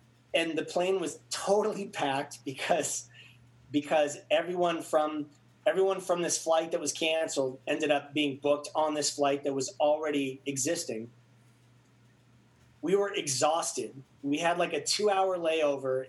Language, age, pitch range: English, 30-49, 135-180 Hz